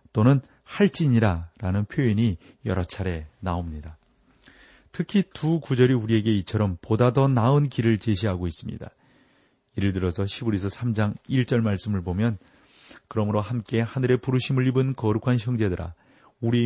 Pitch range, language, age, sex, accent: 105-130 Hz, Korean, 40-59, male, native